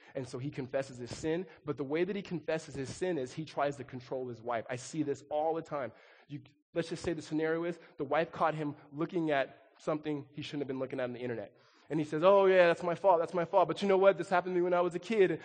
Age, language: 20-39, English